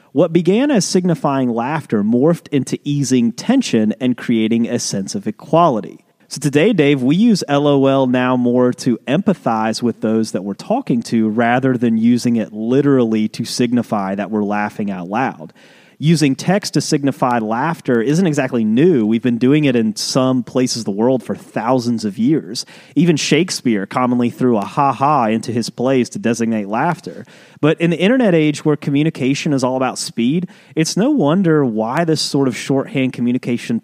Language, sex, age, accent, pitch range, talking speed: English, male, 30-49, American, 120-155 Hz, 170 wpm